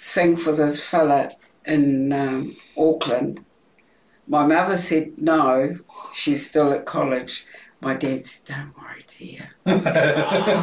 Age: 60-79